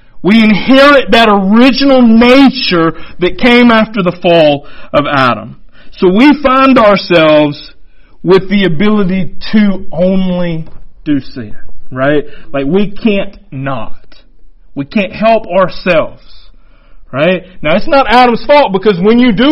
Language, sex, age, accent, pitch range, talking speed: English, male, 40-59, American, 185-240 Hz, 130 wpm